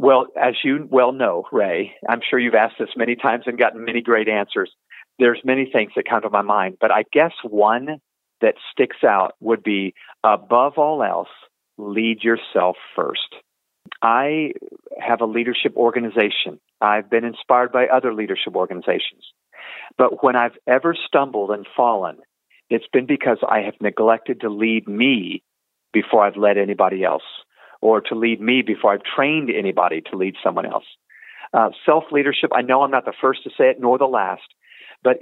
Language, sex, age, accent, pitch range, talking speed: English, male, 50-69, American, 110-155 Hz, 170 wpm